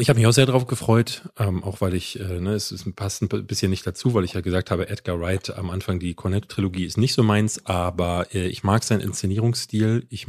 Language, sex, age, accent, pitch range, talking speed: German, male, 30-49, German, 95-120 Hz, 250 wpm